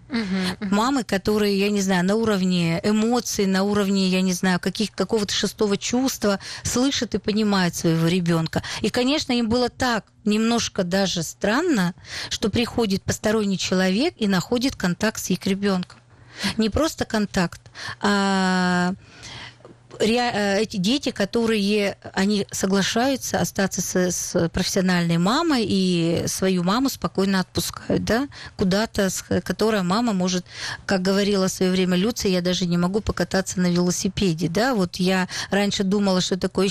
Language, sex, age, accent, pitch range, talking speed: Russian, female, 40-59, native, 185-220 Hz, 135 wpm